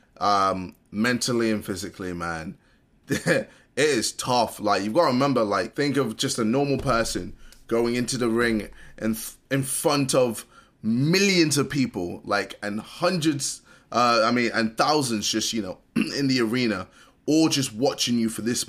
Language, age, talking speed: English, 20-39, 165 wpm